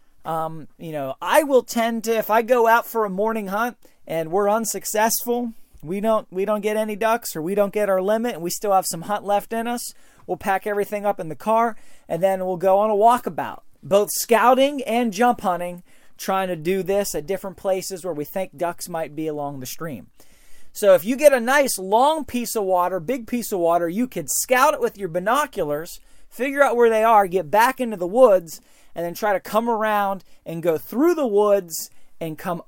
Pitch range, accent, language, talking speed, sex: 175-235 Hz, American, English, 220 wpm, male